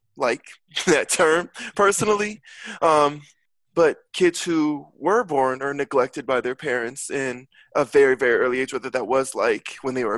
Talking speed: 165 wpm